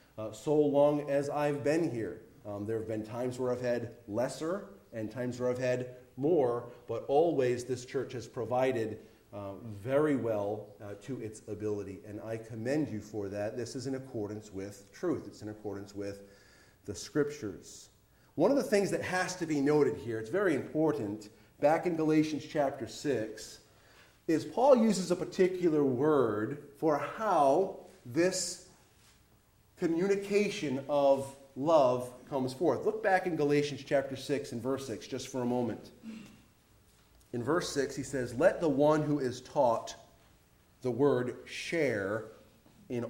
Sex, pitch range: male, 110-145 Hz